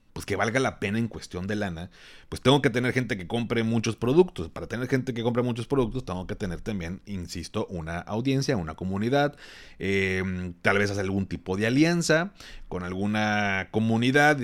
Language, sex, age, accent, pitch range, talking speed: Spanish, male, 30-49, Mexican, 95-125 Hz, 185 wpm